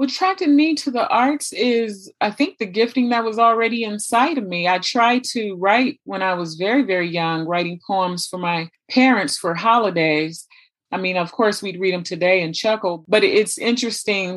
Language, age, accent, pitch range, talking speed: English, 30-49, American, 175-220 Hz, 195 wpm